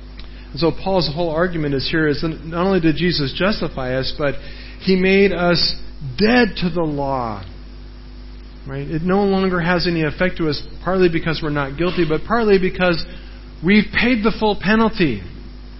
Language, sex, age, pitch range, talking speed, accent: English, male, 40-59, 125-170 Hz, 165 wpm, American